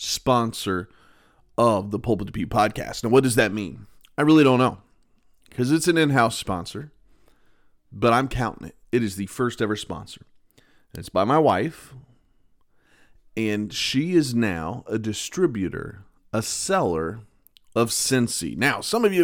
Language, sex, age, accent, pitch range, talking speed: English, male, 30-49, American, 100-130 Hz, 155 wpm